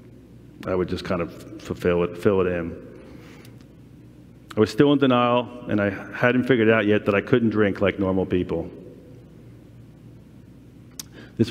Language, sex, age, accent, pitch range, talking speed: English, male, 40-59, American, 95-125 Hz, 150 wpm